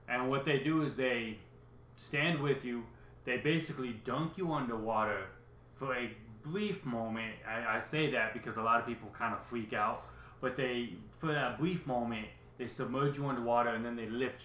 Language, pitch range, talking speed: English, 110-140 Hz, 185 wpm